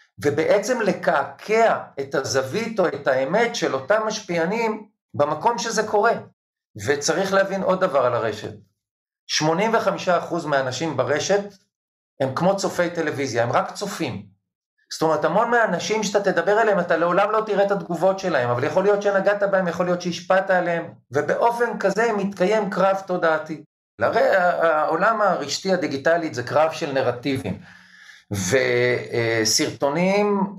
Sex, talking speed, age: male, 130 wpm, 50-69